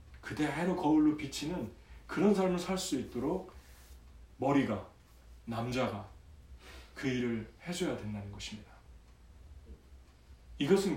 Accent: Korean